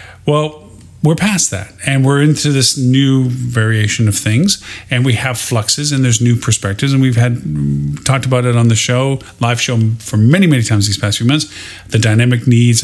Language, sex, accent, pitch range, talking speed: English, male, American, 110-130 Hz, 195 wpm